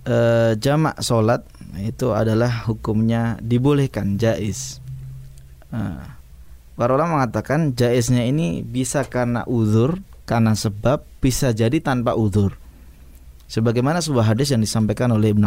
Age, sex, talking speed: 20-39, male, 115 wpm